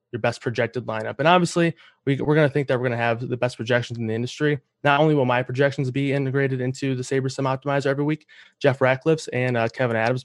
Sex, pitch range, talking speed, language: male, 120-140 Hz, 240 wpm, English